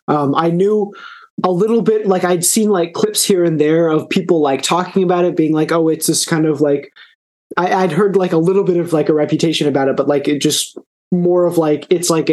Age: 20-39